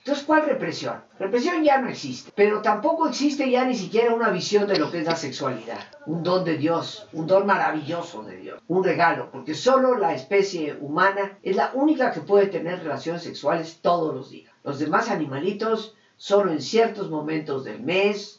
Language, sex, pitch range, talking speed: Spanish, female, 160-235 Hz, 185 wpm